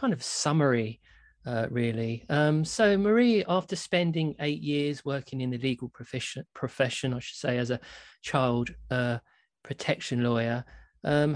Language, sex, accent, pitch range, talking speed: English, male, British, 125-155 Hz, 135 wpm